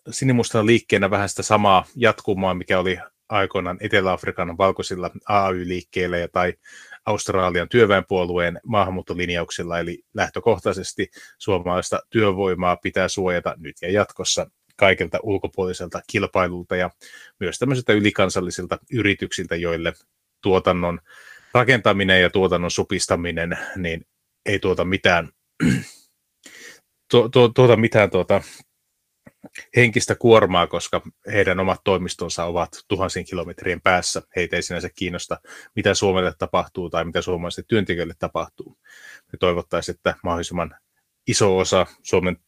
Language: Finnish